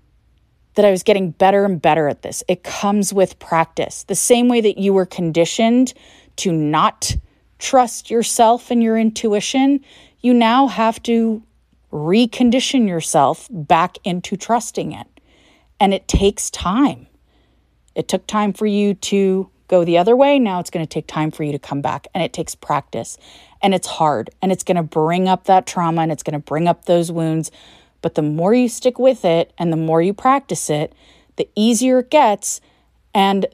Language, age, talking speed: English, 30-49, 185 wpm